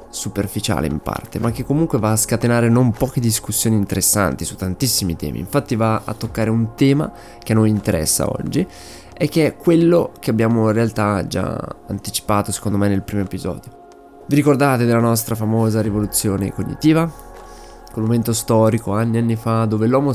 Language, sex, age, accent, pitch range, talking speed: Italian, male, 20-39, native, 105-125 Hz, 175 wpm